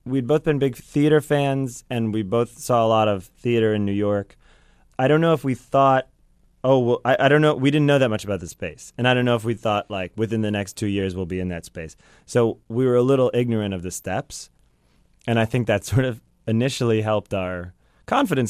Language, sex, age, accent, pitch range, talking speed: English, male, 20-39, American, 100-130 Hz, 240 wpm